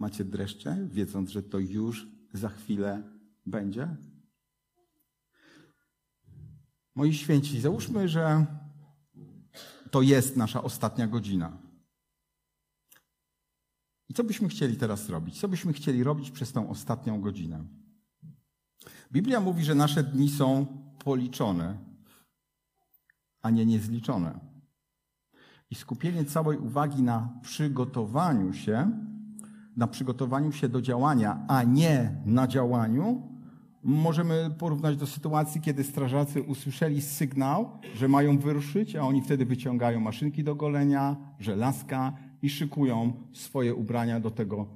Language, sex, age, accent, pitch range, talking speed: Polish, male, 50-69, native, 110-145 Hz, 110 wpm